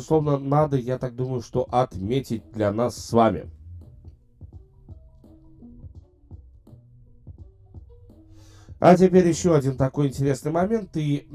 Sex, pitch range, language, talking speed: male, 110-155 Hz, Russian, 100 wpm